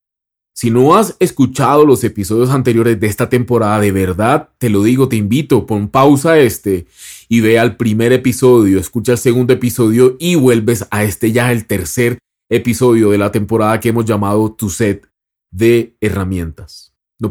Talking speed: 165 wpm